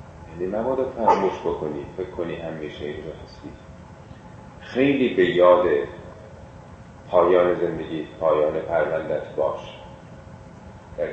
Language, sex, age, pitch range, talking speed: Persian, male, 40-59, 90-110 Hz, 90 wpm